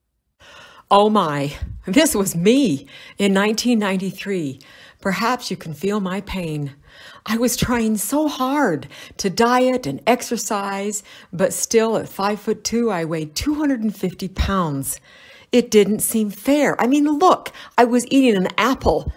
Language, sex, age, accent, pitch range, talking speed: English, female, 60-79, American, 175-240 Hz, 140 wpm